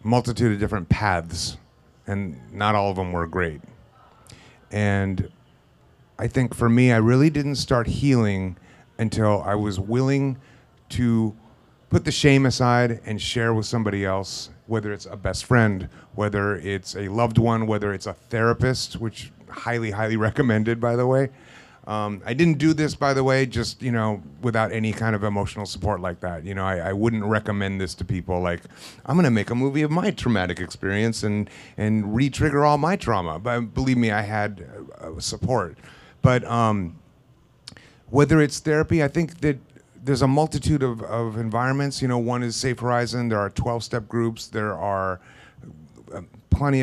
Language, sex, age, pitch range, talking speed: English, male, 30-49, 105-130 Hz, 175 wpm